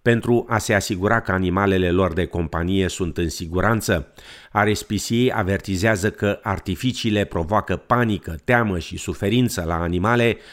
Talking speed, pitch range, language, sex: 130 wpm, 85-105 Hz, Romanian, male